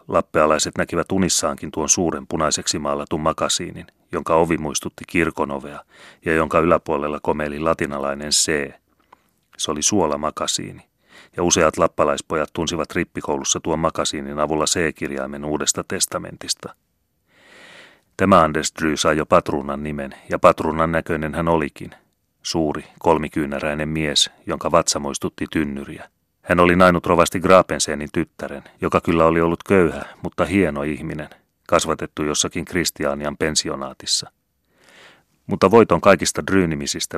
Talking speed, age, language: 120 wpm, 30-49, Finnish